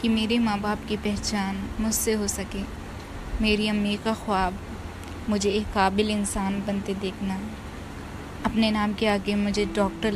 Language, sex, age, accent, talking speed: Hindi, female, 20-39, native, 150 wpm